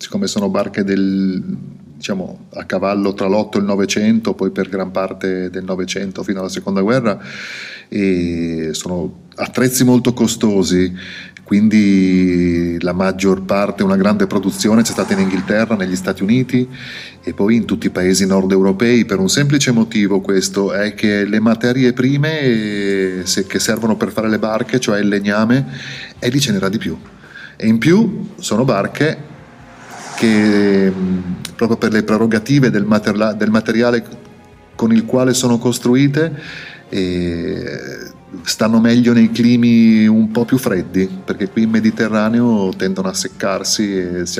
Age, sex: 30-49, male